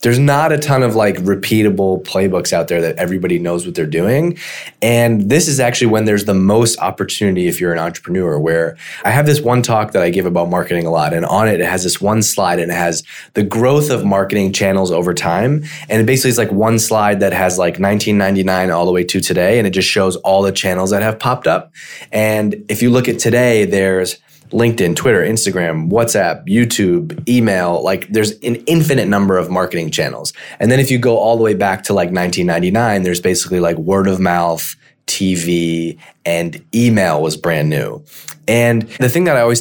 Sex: male